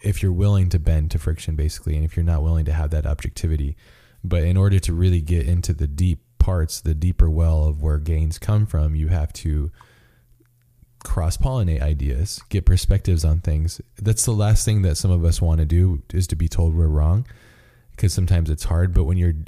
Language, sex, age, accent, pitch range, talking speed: English, male, 20-39, American, 80-95 Hz, 215 wpm